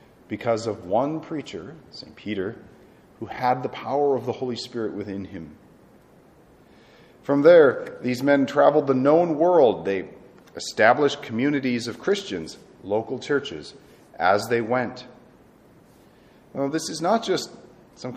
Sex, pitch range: male, 110-145 Hz